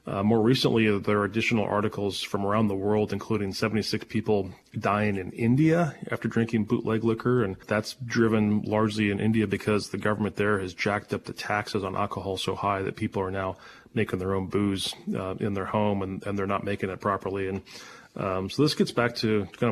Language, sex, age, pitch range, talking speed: English, male, 30-49, 100-115 Hz, 205 wpm